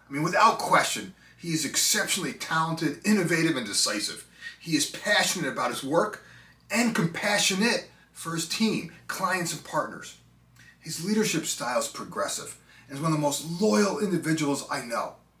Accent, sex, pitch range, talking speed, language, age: American, male, 155-210 Hz, 155 wpm, English, 30-49